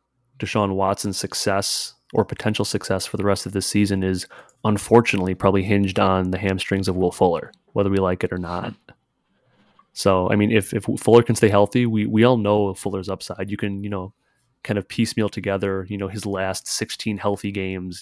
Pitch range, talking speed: 95-105 Hz, 195 wpm